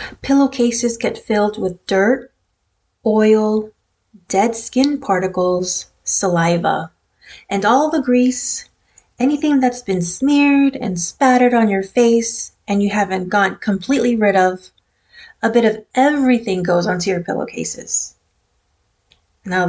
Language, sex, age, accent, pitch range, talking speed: English, female, 30-49, American, 175-235 Hz, 120 wpm